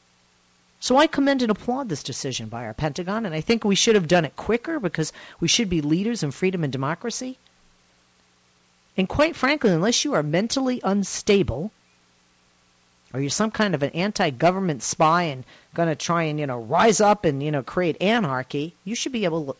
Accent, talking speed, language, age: American, 190 wpm, English, 50-69